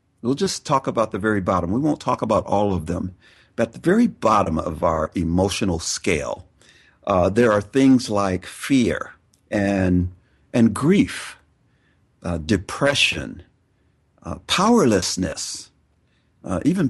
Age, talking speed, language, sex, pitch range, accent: 60-79, 135 wpm, English, male, 90-120 Hz, American